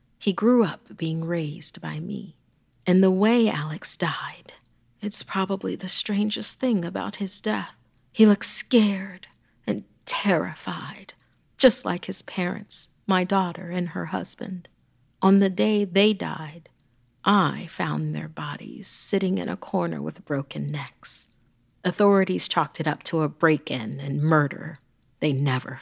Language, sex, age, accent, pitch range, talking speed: English, female, 40-59, American, 155-200 Hz, 140 wpm